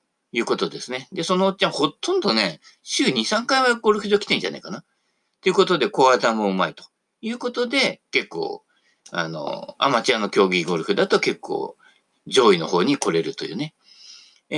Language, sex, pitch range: Japanese, male, 145-235 Hz